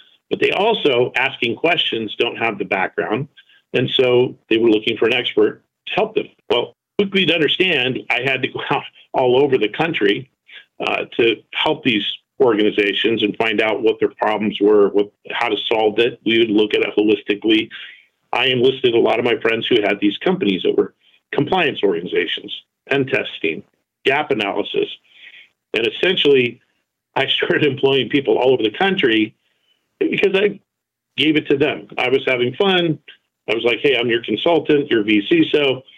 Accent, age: American, 50-69